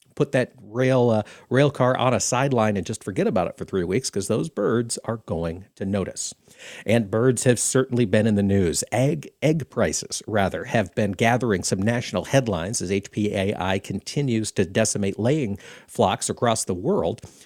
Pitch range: 105-135 Hz